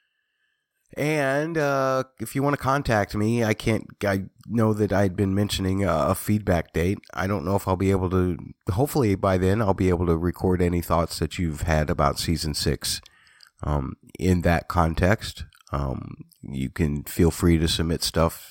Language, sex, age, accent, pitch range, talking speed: English, male, 30-49, American, 75-100 Hz, 180 wpm